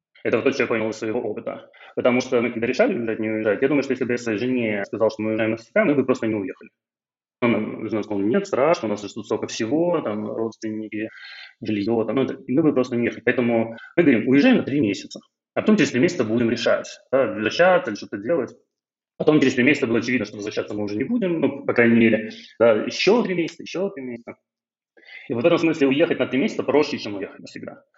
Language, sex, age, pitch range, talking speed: Russian, male, 20-39, 110-135 Hz, 230 wpm